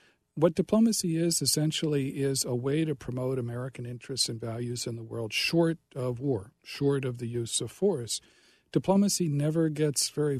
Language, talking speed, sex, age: English, 165 wpm, male, 50-69